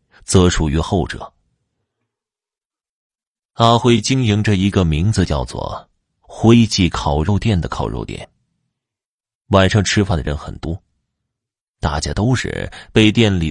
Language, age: Chinese, 30-49